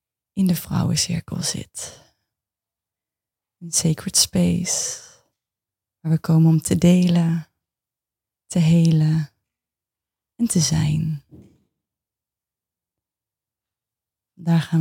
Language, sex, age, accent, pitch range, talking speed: Dutch, female, 20-39, Dutch, 155-180 Hz, 80 wpm